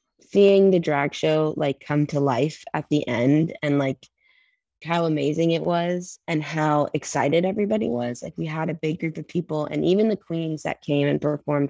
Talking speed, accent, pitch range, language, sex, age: 195 wpm, American, 150-170 Hz, English, female, 20-39